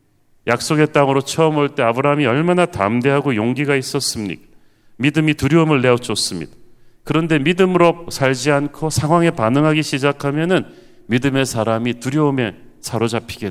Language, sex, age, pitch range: Korean, male, 40-59, 115-150 Hz